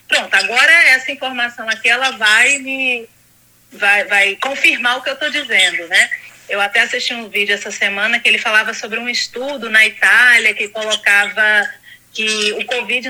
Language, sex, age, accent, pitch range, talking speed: Portuguese, female, 30-49, Brazilian, 210-280 Hz, 170 wpm